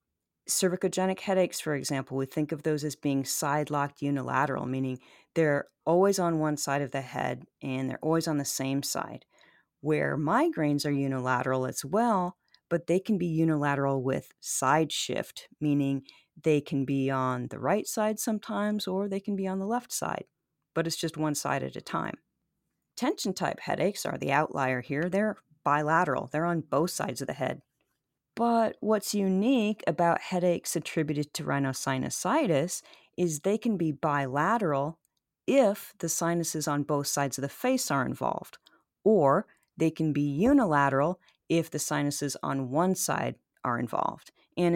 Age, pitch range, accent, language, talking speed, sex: 40-59, 140-180 Hz, American, English, 160 wpm, female